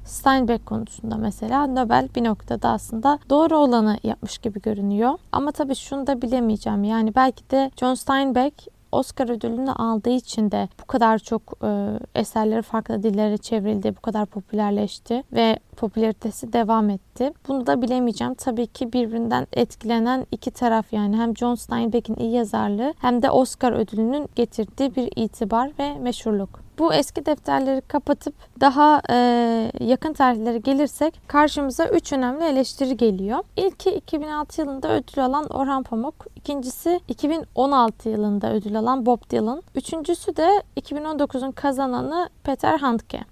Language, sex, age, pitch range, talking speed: Turkish, female, 20-39, 225-280 Hz, 140 wpm